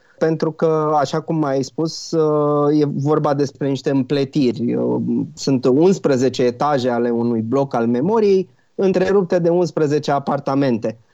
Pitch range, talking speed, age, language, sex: 130-165 Hz, 125 wpm, 30-49, Romanian, male